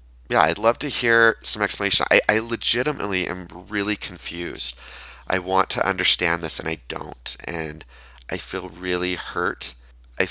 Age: 20-39